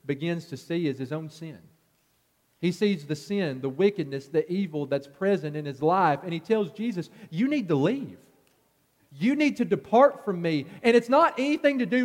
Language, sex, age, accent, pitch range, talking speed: English, male, 40-59, American, 160-235 Hz, 200 wpm